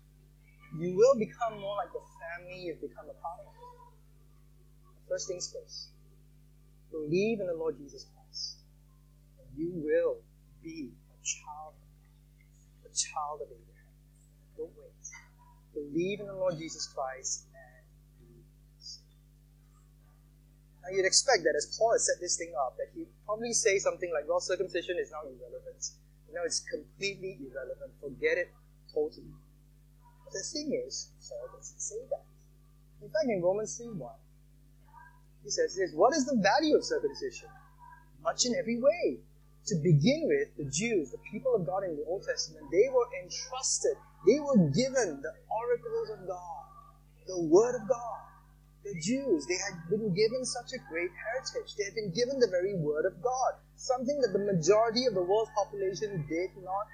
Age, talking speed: 30-49, 170 wpm